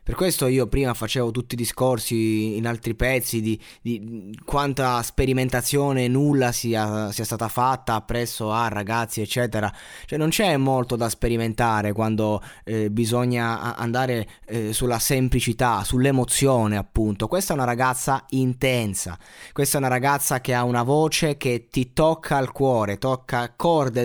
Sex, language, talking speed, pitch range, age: male, Italian, 150 wpm, 115-140 Hz, 20-39